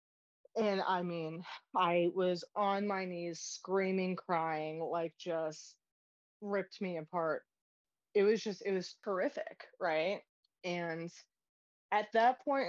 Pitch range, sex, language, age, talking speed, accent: 165-210 Hz, female, English, 20-39, 125 wpm, American